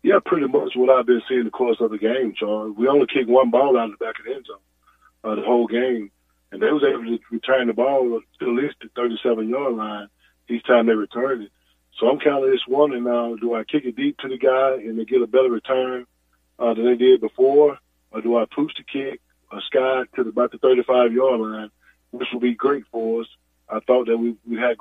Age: 20-39